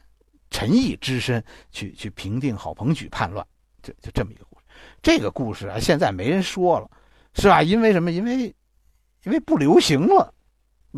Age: 60-79